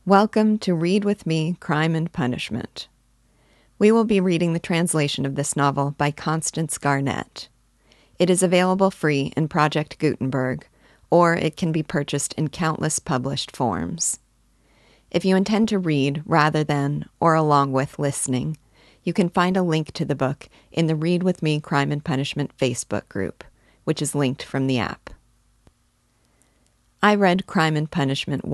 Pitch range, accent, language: 140-170 Hz, American, English